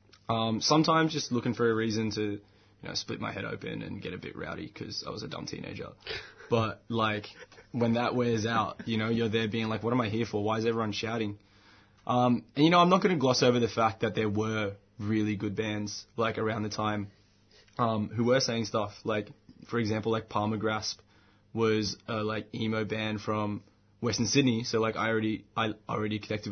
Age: 20-39